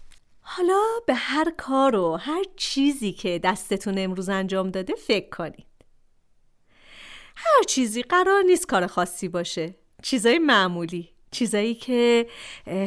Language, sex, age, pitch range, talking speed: Persian, female, 40-59, 185-265 Hz, 115 wpm